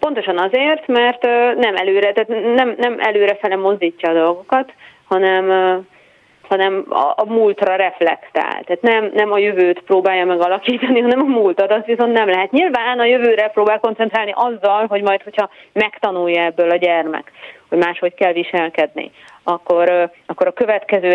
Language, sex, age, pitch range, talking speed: Hungarian, female, 30-49, 175-220 Hz, 145 wpm